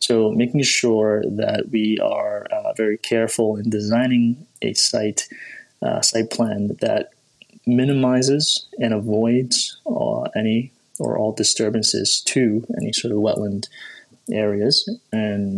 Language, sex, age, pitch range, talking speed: English, male, 20-39, 105-120 Hz, 125 wpm